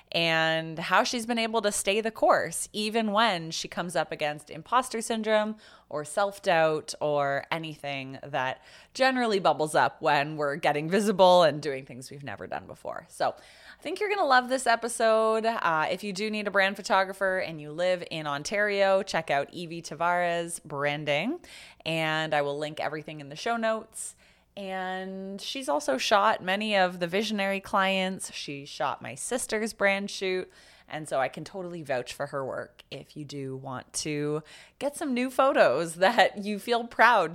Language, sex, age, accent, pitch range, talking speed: English, female, 20-39, American, 155-215 Hz, 175 wpm